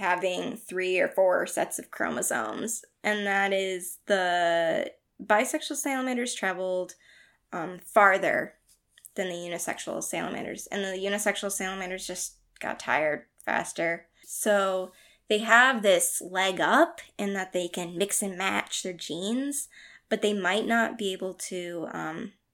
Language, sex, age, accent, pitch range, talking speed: English, female, 10-29, American, 180-225 Hz, 135 wpm